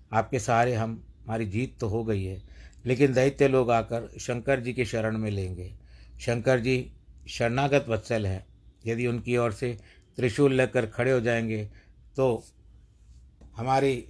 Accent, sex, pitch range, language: native, male, 105-125 Hz, Hindi